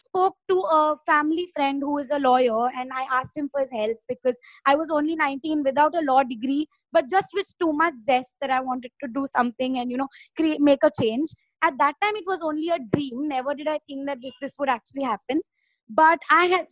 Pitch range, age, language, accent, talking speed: 260-315 Hz, 20-39, English, Indian, 230 wpm